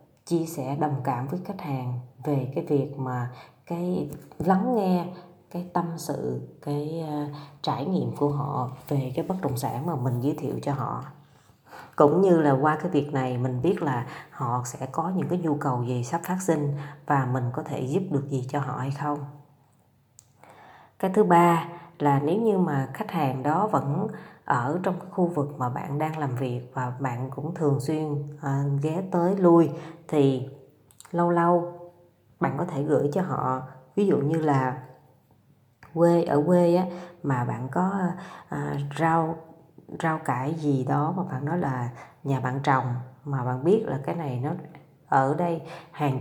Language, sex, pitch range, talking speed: Vietnamese, female, 135-170 Hz, 180 wpm